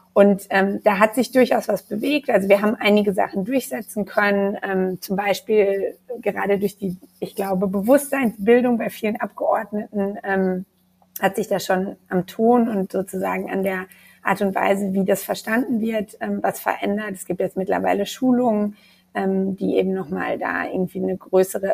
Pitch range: 195-215 Hz